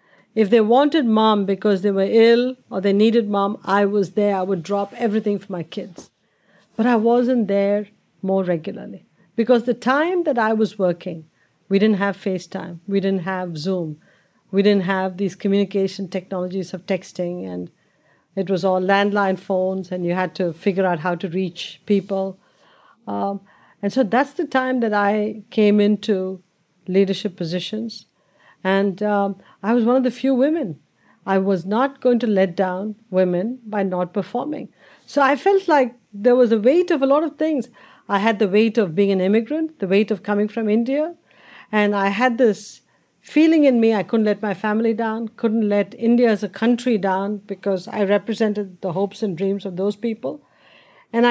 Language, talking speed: English, 185 wpm